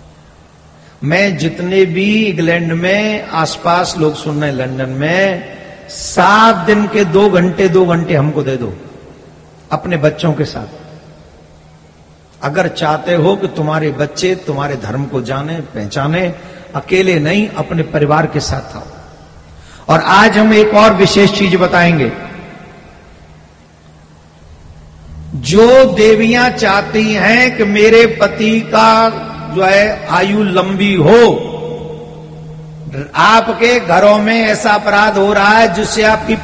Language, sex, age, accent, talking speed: Gujarati, male, 50-69, native, 120 wpm